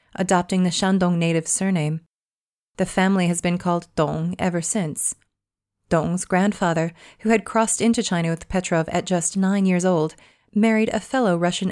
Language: English